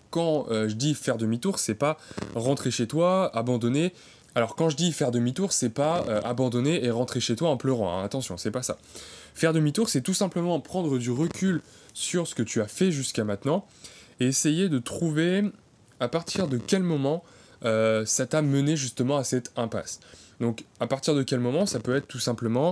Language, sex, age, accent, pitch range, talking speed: French, male, 20-39, French, 115-155 Hz, 205 wpm